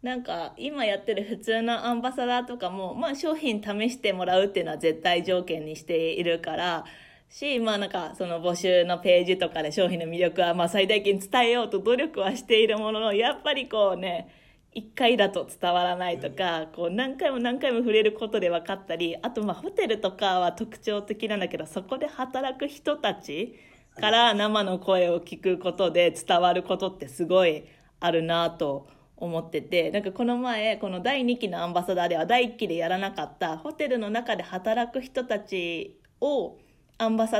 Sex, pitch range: female, 175-230 Hz